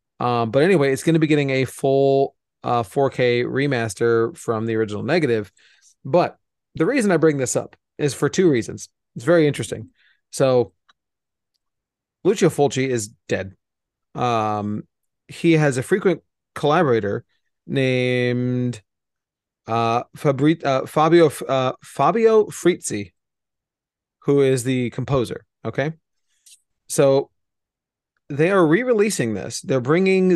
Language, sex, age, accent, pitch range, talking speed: English, male, 30-49, American, 120-155 Hz, 120 wpm